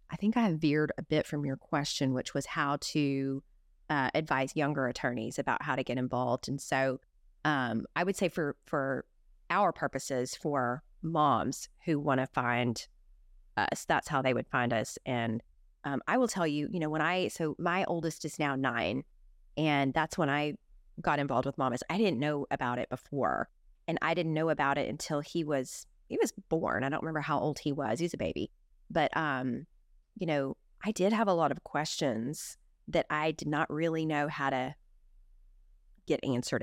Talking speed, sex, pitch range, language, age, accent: 195 wpm, female, 135-170 Hz, English, 30-49, American